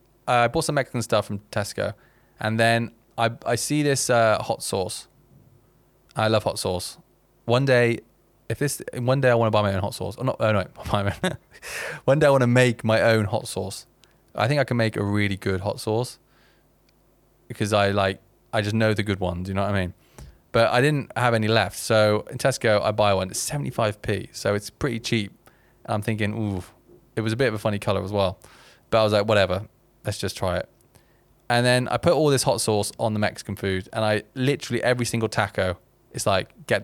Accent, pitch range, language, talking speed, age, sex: British, 105-125 Hz, English, 225 wpm, 20-39, male